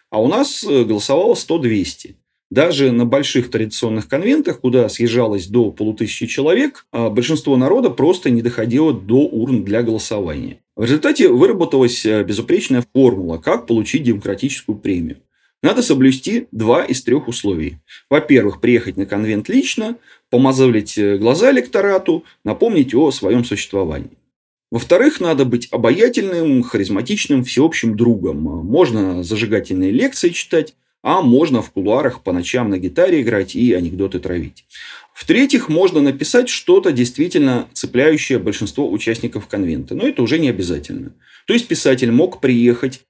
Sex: male